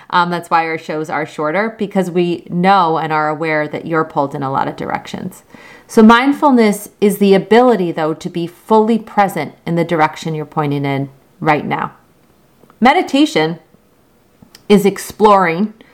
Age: 30-49